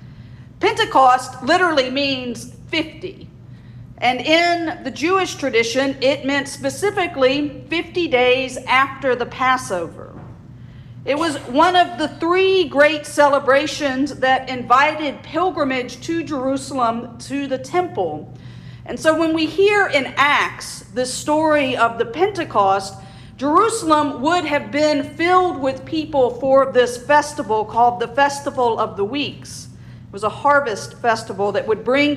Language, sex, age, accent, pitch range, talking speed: English, female, 50-69, American, 240-295 Hz, 125 wpm